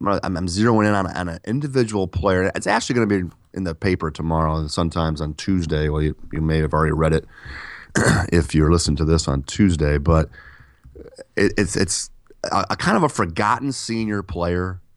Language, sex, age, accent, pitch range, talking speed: English, male, 30-49, American, 80-100 Hz, 190 wpm